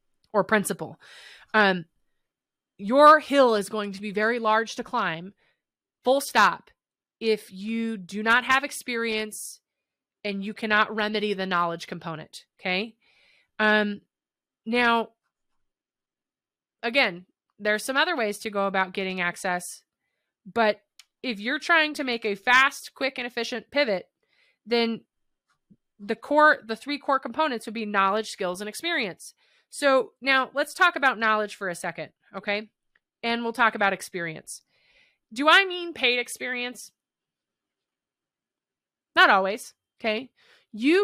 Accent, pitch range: American, 205-260 Hz